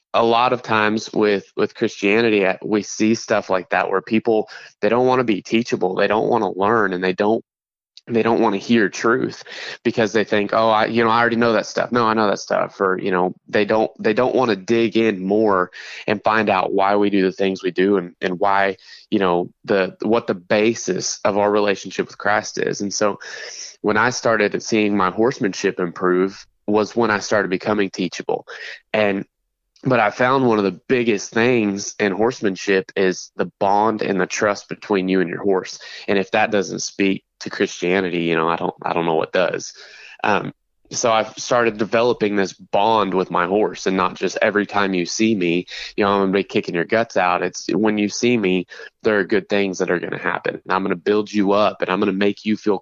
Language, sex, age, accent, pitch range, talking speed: English, male, 20-39, American, 95-110 Hz, 225 wpm